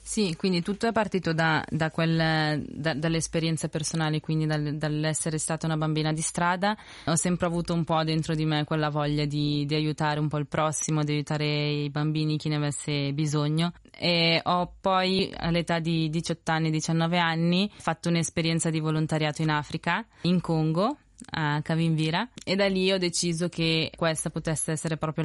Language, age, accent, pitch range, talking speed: Italian, 20-39, native, 155-170 Hz, 175 wpm